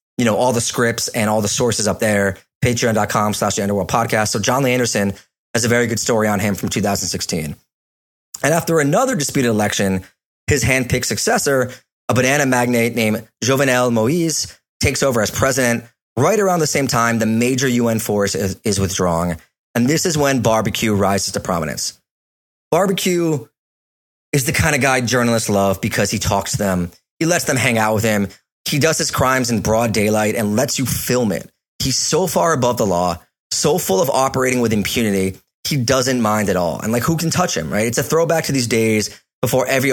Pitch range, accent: 105-130 Hz, American